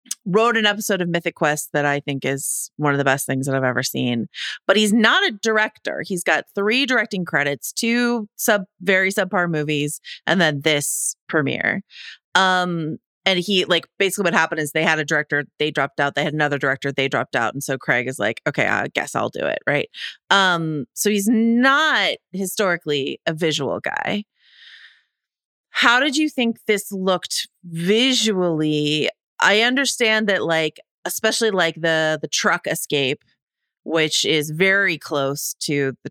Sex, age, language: female, 30-49, English